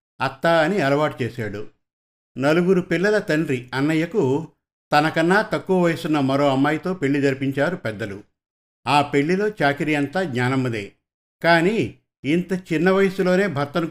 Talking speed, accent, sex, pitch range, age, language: 110 wpm, native, male, 130-165 Hz, 50-69, Telugu